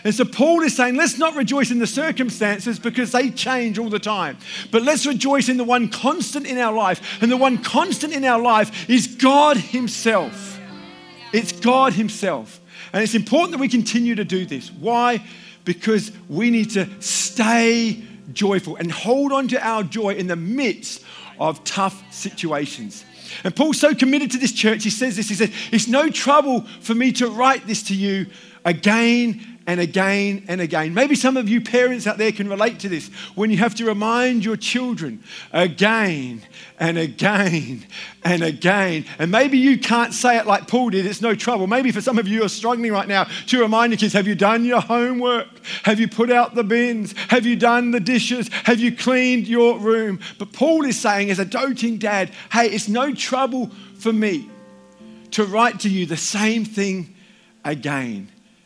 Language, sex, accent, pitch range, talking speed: English, male, British, 200-245 Hz, 190 wpm